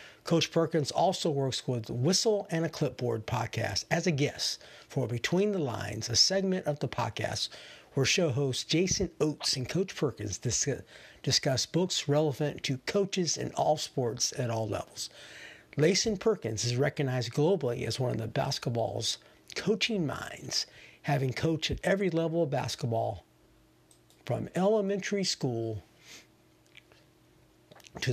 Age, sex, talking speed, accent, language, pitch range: 50-69, male, 135 wpm, American, English, 120-160 Hz